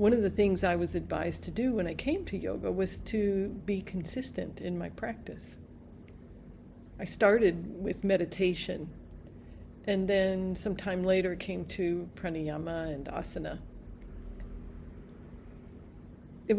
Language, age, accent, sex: Japanese, 50-69, American, female